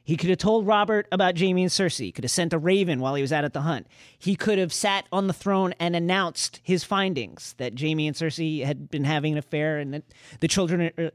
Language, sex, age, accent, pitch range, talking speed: English, male, 30-49, American, 150-205 Hz, 250 wpm